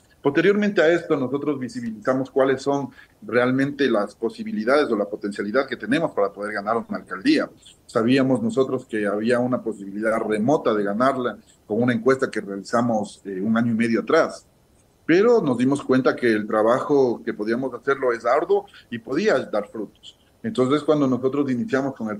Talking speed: 170 wpm